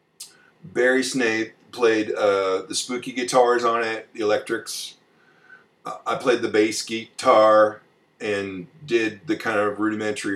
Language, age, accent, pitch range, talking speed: English, 40-59, American, 95-120 Hz, 135 wpm